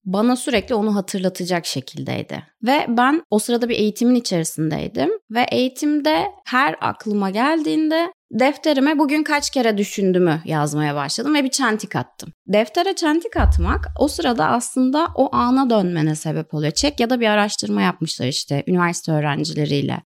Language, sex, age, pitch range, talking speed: Turkish, female, 30-49, 185-250 Hz, 145 wpm